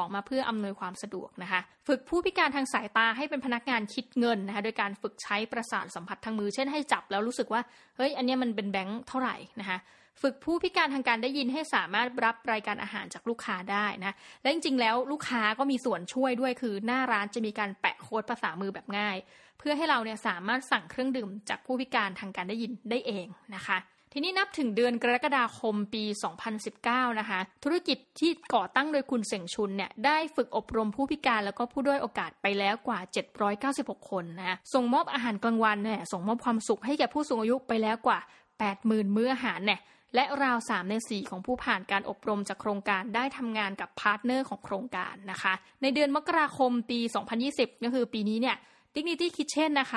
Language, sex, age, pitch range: Thai, female, 20-39, 205-260 Hz